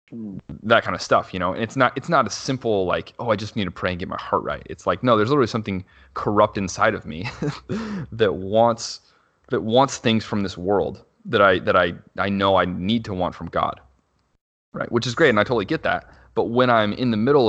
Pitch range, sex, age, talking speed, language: 90-110 Hz, male, 30-49, 240 wpm, English